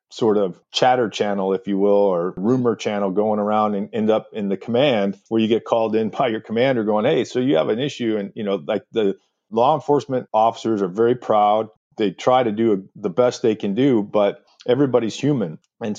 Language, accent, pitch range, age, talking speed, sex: English, American, 100-120 Hz, 40-59, 215 wpm, male